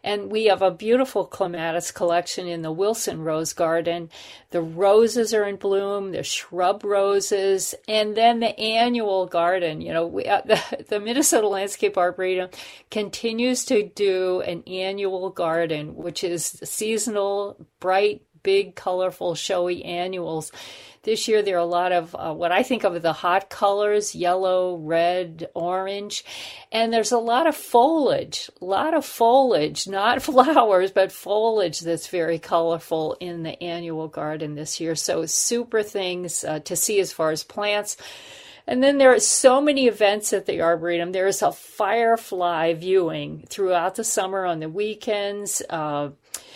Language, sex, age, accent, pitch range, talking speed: English, female, 50-69, American, 170-215 Hz, 155 wpm